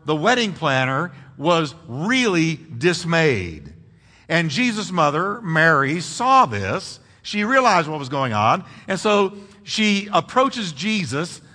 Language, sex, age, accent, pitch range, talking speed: English, male, 50-69, American, 120-200 Hz, 120 wpm